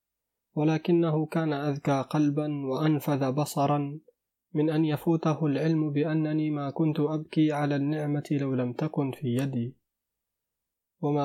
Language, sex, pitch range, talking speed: Arabic, male, 135-155 Hz, 115 wpm